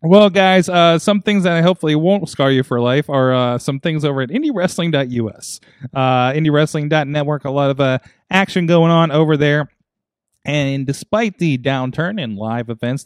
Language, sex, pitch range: English, male, 120-155 Hz